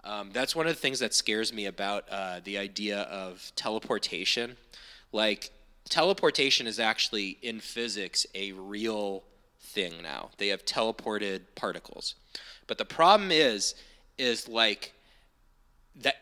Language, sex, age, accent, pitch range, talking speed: English, male, 20-39, American, 100-120 Hz, 135 wpm